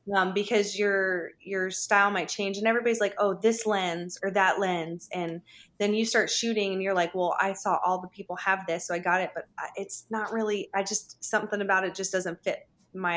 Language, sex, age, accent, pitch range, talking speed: English, female, 20-39, American, 180-205 Hz, 225 wpm